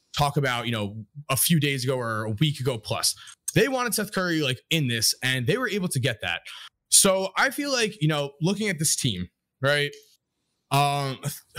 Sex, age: male, 20-39